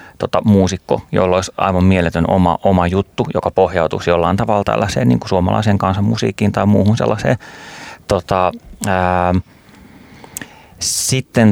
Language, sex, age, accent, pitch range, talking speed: Finnish, male, 30-49, native, 95-115 Hz, 120 wpm